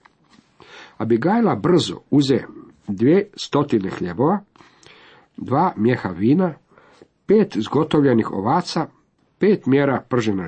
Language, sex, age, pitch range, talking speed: Croatian, male, 50-69, 110-165 Hz, 85 wpm